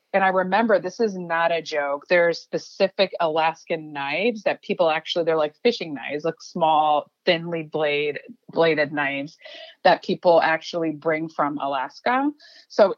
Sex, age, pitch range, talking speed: female, 30-49, 155-205 Hz, 150 wpm